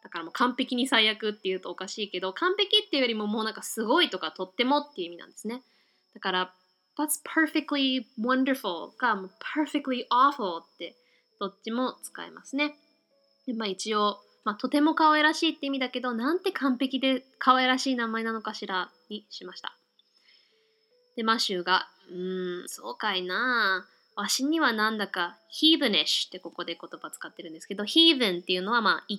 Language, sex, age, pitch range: Japanese, female, 20-39, 195-295 Hz